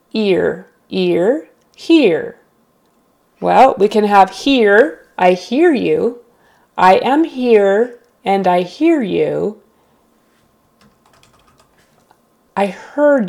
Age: 30-49